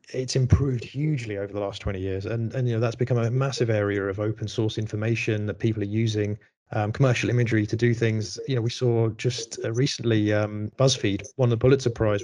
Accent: British